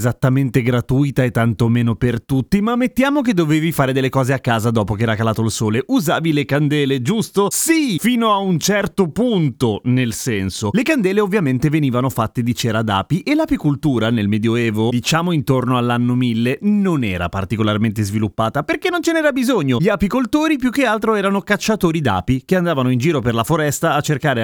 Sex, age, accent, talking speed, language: male, 30-49, native, 185 wpm, Italian